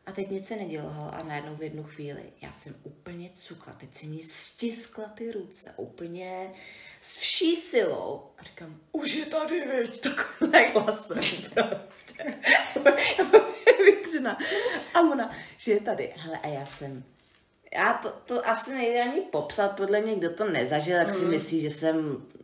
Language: Czech